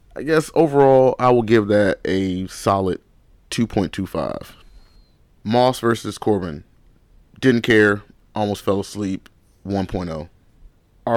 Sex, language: male, English